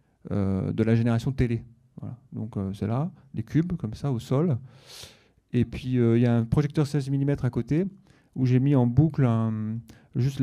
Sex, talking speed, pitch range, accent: male, 195 wpm, 115-135 Hz, French